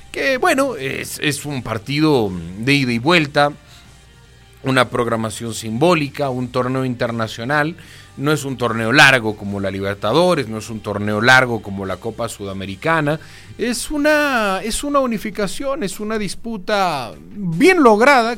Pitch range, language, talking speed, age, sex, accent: 110-165 Hz, Spanish, 135 wpm, 40-59, male, Mexican